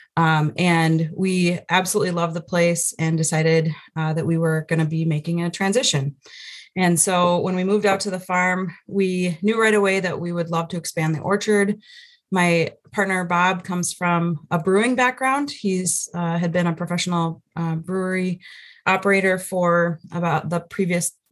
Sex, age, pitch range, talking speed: female, 30-49, 165-185 Hz, 170 wpm